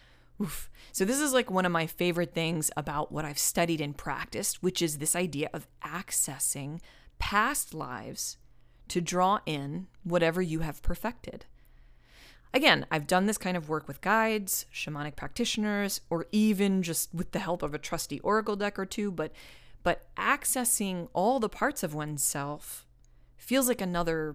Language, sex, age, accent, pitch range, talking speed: English, female, 30-49, American, 140-185 Hz, 160 wpm